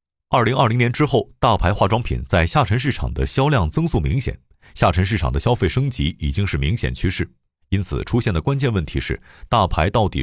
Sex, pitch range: male, 75-115 Hz